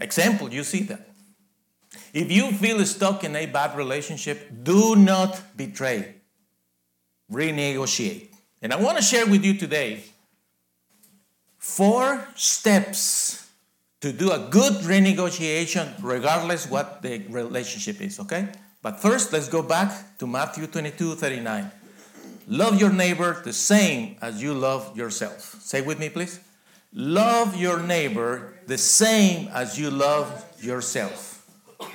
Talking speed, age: 125 wpm, 50-69